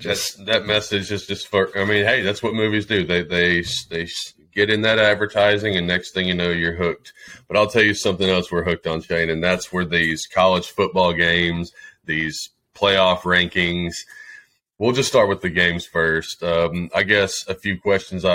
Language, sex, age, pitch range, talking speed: English, male, 30-49, 80-95 Hz, 195 wpm